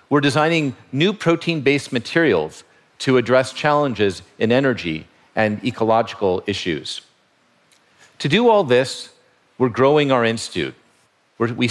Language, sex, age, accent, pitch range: Korean, male, 50-69, American, 110-145 Hz